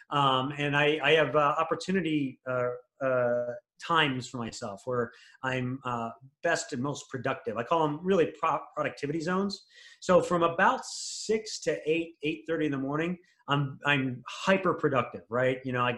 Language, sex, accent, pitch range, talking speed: English, male, American, 125-155 Hz, 170 wpm